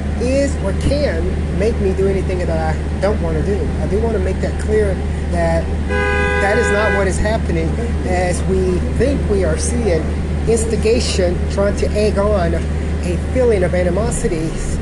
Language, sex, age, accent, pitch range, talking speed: English, male, 30-49, American, 75-85 Hz, 170 wpm